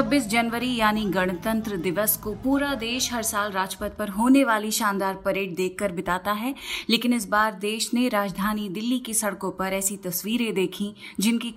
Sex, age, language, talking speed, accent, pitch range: female, 30-49, Hindi, 170 wpm, native, 200-255 Hz